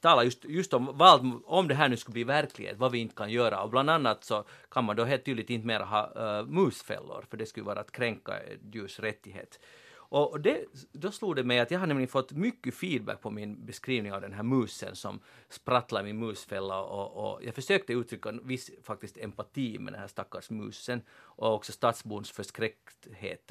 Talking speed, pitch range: 205 wpm, 110-145 Hz